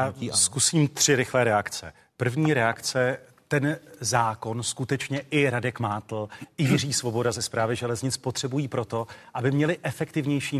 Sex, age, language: male, 40-59, Czech